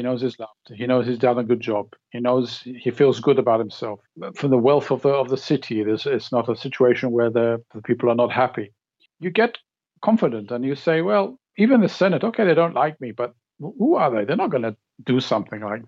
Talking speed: 250 wpm